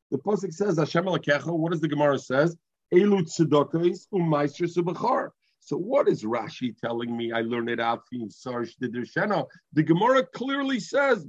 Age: 50-69